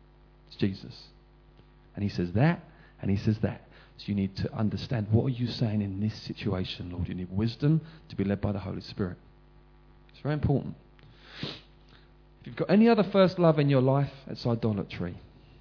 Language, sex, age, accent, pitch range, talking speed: English, male, 40-59, British, 120-170 Hz, 180 wpm